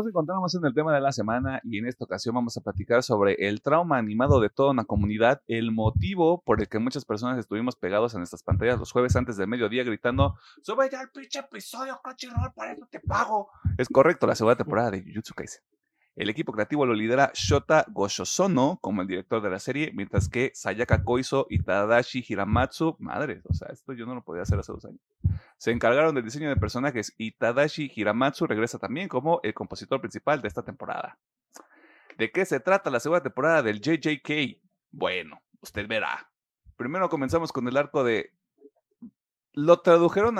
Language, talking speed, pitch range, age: Spanish, 195 wpm, 105-145 Hz, 30-49